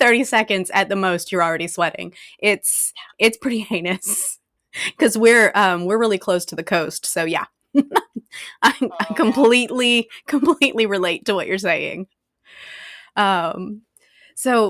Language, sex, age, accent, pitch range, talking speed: English, female, 20-39, American, 175-220 Hz, 140 wpm